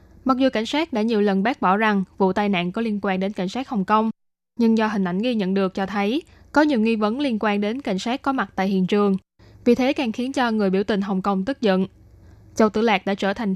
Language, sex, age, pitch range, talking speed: Vietnamese, female, 10-29, 195-230 Hz, 275 wpm